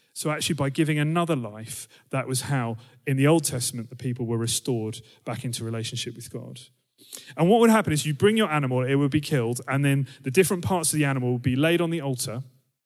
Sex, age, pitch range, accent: male, 30-49, 125-165 Hz, British